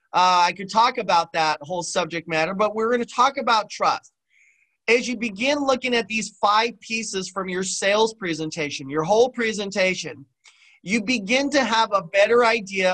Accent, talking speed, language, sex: American, 170 wpm, English, male